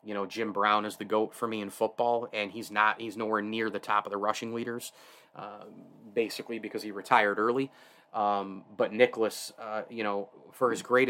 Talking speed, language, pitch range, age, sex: 205 wpm, English, 105-120 Hz, 30-49, male